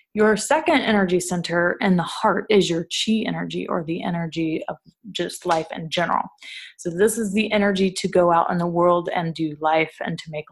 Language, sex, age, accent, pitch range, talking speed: English, female, 20-39, American, 170-220 Hz, 205 wpm